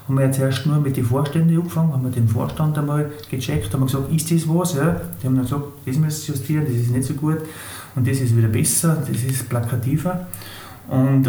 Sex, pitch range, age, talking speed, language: male, 130-150 Hz, 30-49, 230 wpm, German